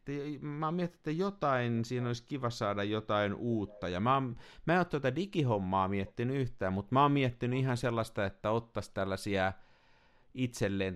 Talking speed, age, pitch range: 170 wpm, 50-69, 100-130 Hz